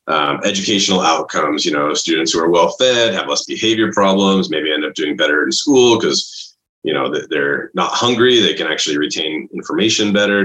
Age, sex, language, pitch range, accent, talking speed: 30-49, male, English, 90-130 Hz, American, 190 wpm